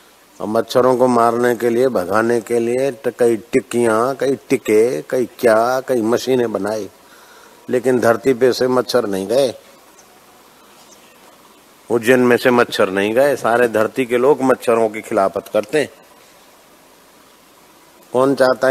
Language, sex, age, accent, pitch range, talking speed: Hindi, male, 50-69, native, 115-140 Hz, 130 wpm